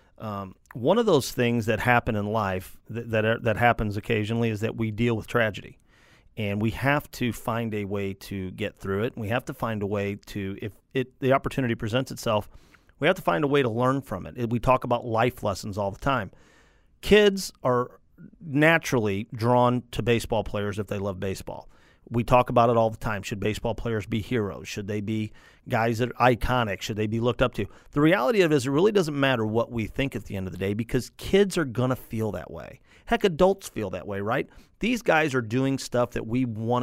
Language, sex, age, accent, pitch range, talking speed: English, male, 40-59, American, 110-135 Hz, 230 wpm